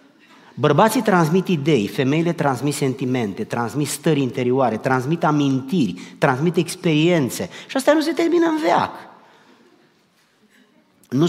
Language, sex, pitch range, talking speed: Romanian, male, 120-185 Hz, 110 wpm